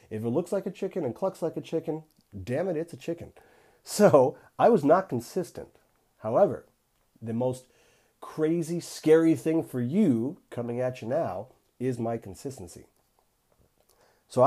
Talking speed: 155 wpm